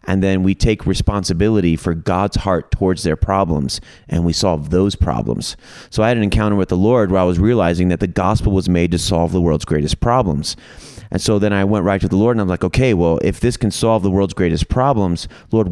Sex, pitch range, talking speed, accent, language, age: male, 85-105 Hz, 235 wpm, American, English, 30-49